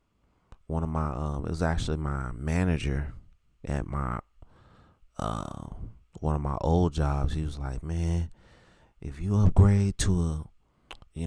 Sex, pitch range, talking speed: male, 75-90 Hz, 145 wpm